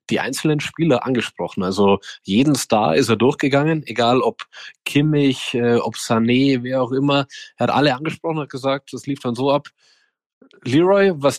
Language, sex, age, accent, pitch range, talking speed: German, male, 20-39, German, 115-145 Hz, 175 wpm